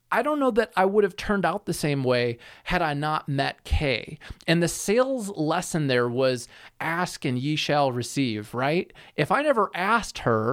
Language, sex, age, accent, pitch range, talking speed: English, male, 30-49, American, 135-175 Hz, 195 wpm